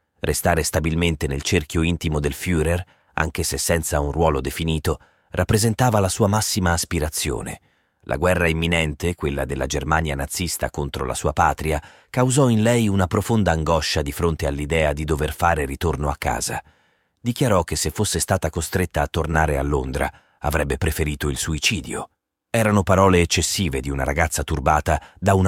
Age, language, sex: 30-49, Italian, male